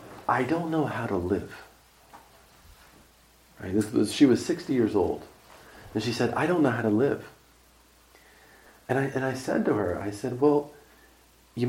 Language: English